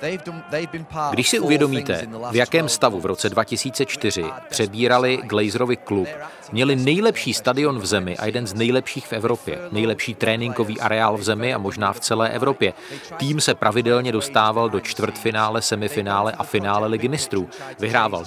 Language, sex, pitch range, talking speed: Czech, male, 105-130 Hz, 150 wpm